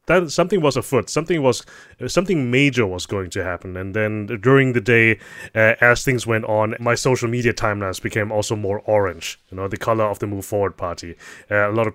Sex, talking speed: male, 210 wpm